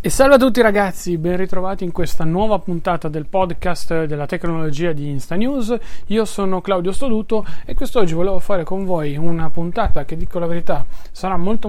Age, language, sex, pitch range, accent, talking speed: 30-49, Italian, male, 155-180 Hz, native, 185 wpm